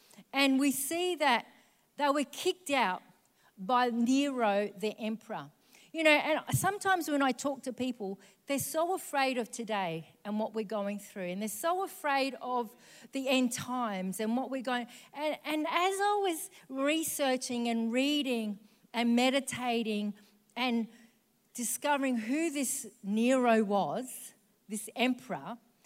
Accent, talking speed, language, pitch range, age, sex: Australian, 140 wpm, English, 210-290 Hz, 40-59, female